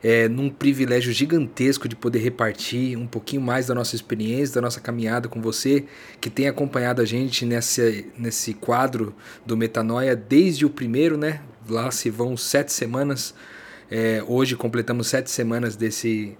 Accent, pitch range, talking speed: Brazilian, 115-135 Hz, 150 wpm